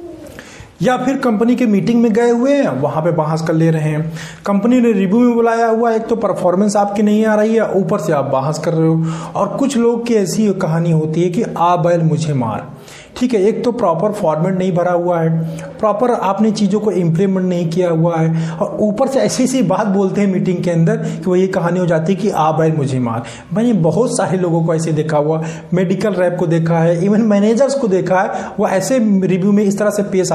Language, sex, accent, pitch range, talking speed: Hindi, male, native, 165-220 Hz, 230 wpm